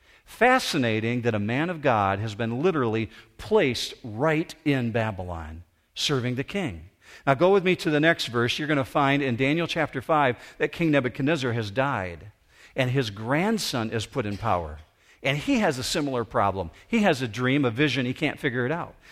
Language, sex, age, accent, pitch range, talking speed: English, male, 50-69, American, 110-160 Hz, 190 wpm